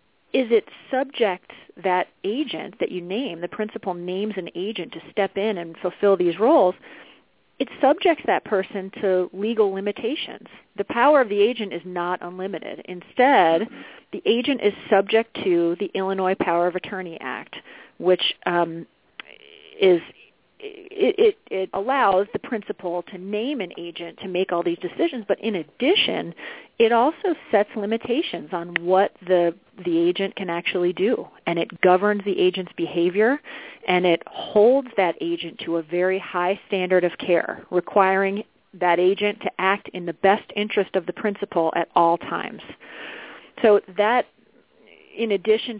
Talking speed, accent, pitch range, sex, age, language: 155 wpm, American, 175-220 Hz, female, 40-59, English